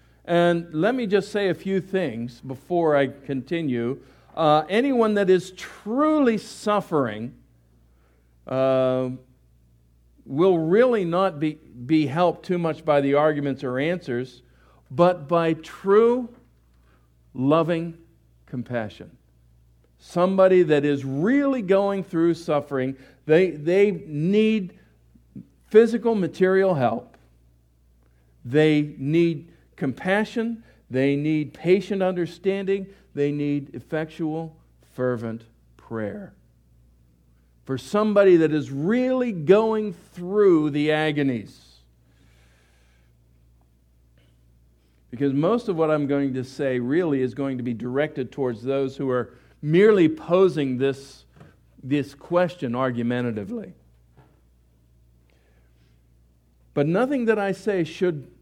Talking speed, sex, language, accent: 105 wpm, male, English, American